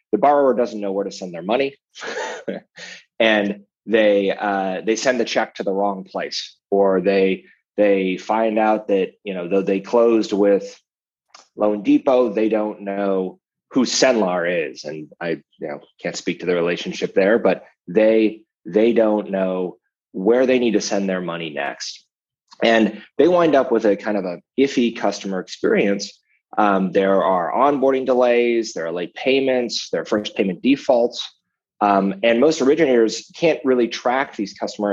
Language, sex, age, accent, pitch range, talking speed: English, male, 30-49, American, 100-120 Hz, 170 wpm